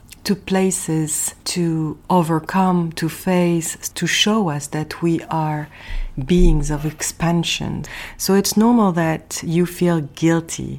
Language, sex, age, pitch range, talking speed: English, female, 40-59, 155-185 Hz, 120 wpm